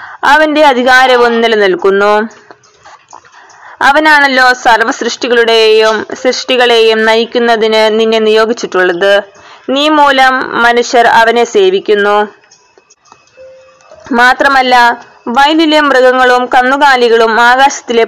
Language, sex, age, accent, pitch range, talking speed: Malayalam, female, 20-39, native, 225-270 Hz, 65 wpm